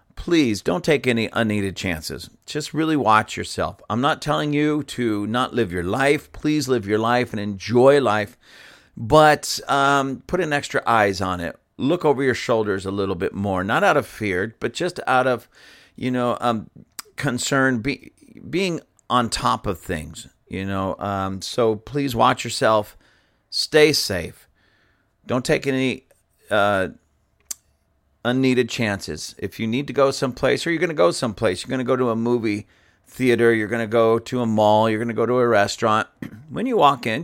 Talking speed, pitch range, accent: 180 wpm, 105-140 Hz, American